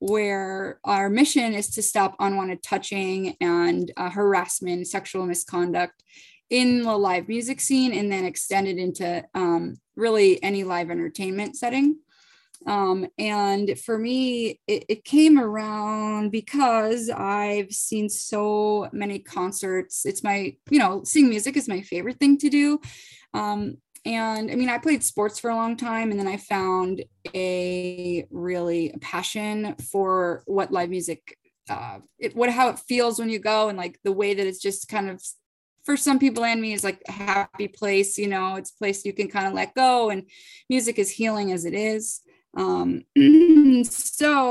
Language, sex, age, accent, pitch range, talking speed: English, female, 10-29, American, 190-240 Hz, 170 wpm